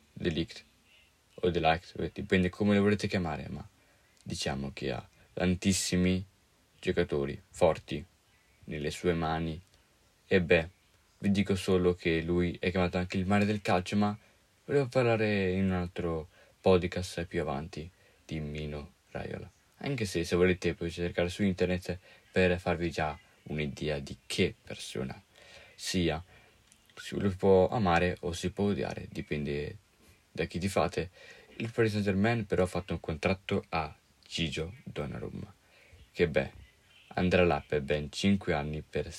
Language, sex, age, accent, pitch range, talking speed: Italian, male, 20-39, native, 80-95 Hz, 145 wpm